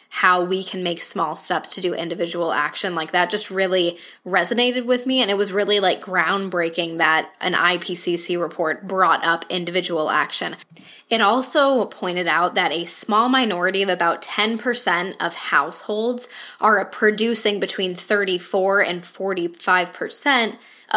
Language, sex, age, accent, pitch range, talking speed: English, female, 10-29, American, 175-215 Hz, 145 wpm